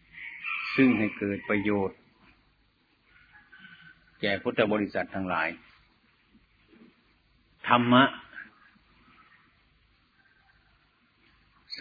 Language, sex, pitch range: Thai, male, 100-120 Hz